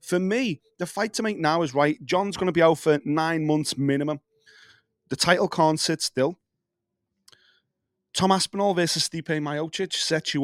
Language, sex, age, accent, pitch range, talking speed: English, male, 30-49, British, 145-195 Hz, 170 wpm